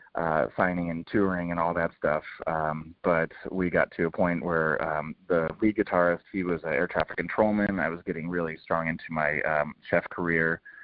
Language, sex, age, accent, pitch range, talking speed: English, male, 30-49, American, 80-95 Hz, 200 wpm